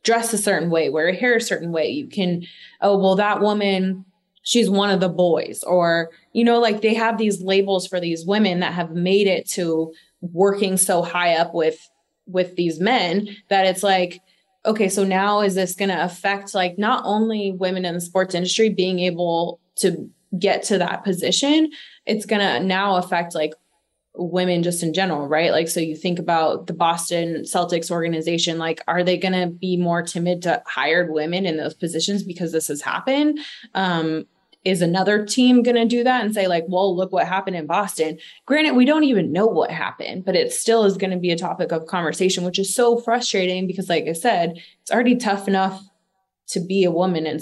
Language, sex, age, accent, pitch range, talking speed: English, female, 20-39, American, 170-200 Hz, 200 wpm